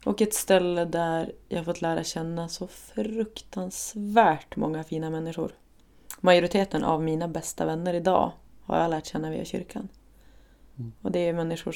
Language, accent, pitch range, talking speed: Swedish, native, 160-185 Hz, 150 wpm